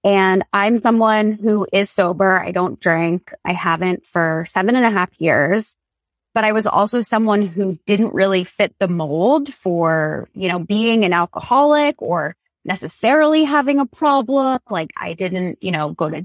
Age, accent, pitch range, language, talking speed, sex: 20-39, American, 185-230 Hz, English, 170 wpm, female